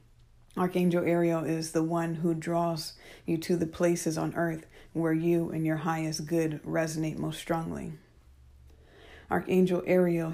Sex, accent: female, American